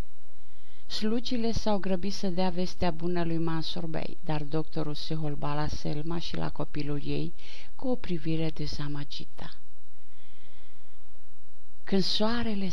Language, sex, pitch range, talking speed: Romanian, female, 150-180 Hz, 120 wpm